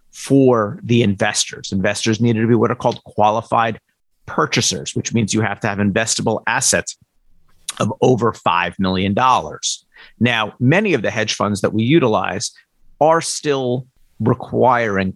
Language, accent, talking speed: English, American, 145 wpm